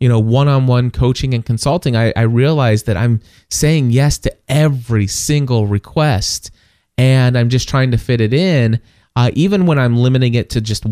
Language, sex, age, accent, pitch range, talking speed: English, male, 20-39, American, 110-145 Hz, 180 wpm